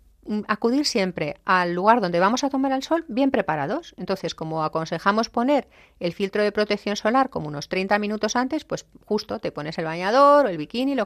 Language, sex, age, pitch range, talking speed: Spanish, female, 40-59, 160-220 Hz, 195 wpm